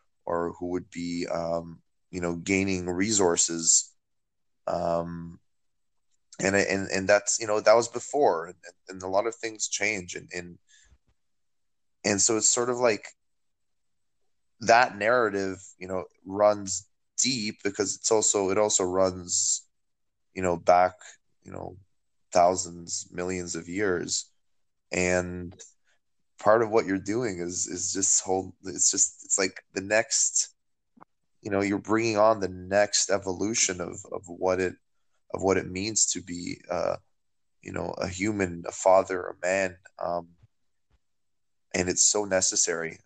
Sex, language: male, English